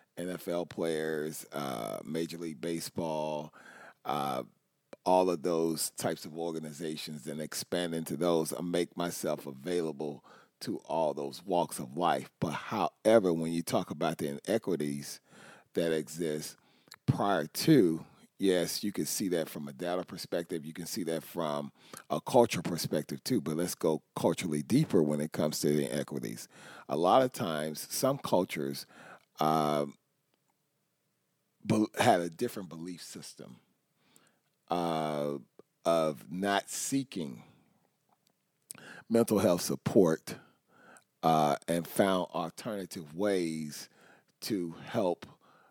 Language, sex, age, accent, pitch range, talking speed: English, male, 40-59, American, 75-90 Hz, 120 wpm